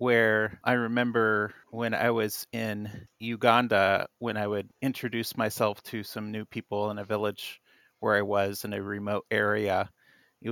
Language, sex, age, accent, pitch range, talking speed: English, male, 30-49, American, 105-120 Hz, 160 wpm